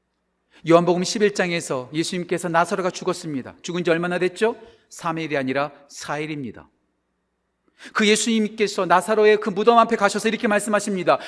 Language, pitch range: Korean, 145-235 Hz